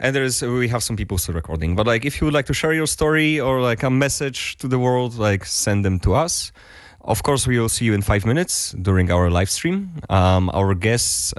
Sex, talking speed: male, 240 wpm